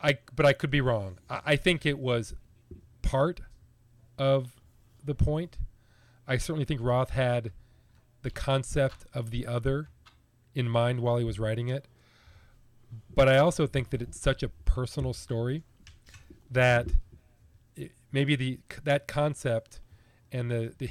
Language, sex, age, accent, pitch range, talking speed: English, male, 40-59, American, 110-135 Hz, 145 wpm